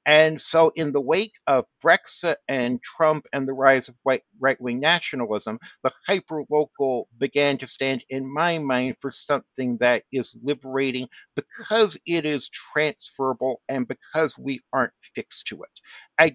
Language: English